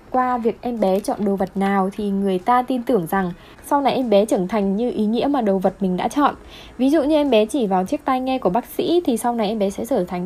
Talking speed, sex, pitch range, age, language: 290 wpm, female, 200-270 Hz, 10-29, Vietnamese